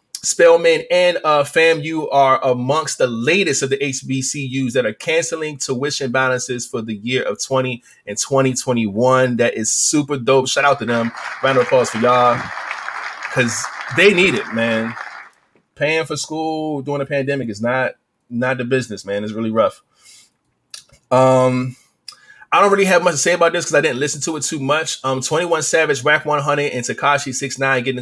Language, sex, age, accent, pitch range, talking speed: English, male, 20-39, American, 125-150 Hz, 180 wpm